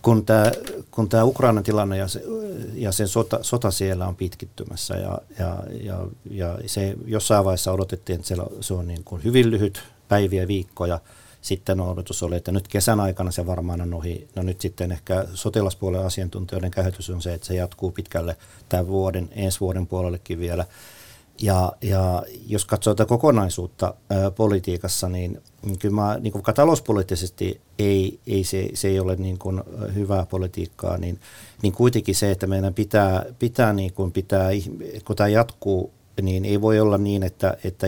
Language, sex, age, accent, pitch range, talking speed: Finnish, male, 50-69, native, 90-105 Hz, 165 wpm